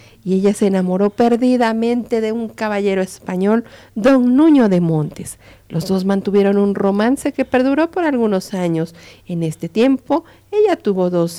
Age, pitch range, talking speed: 50-69, 185-235 Hz, 155 wpm